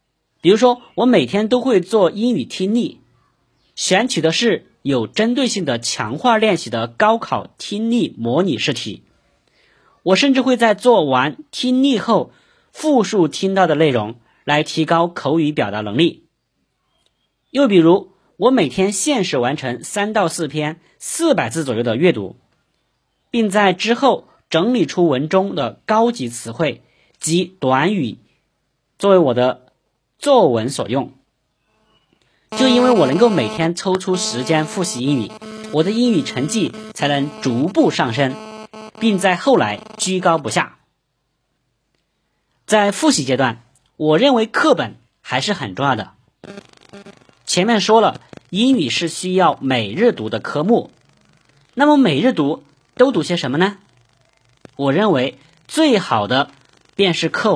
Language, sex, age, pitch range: Chinese, male, 50-69, 150-230 Hz